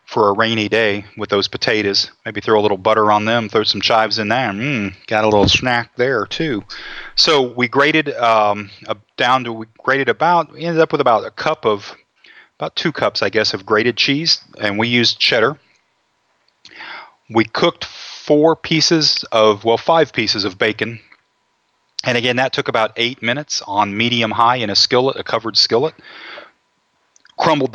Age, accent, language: 30-49, American, English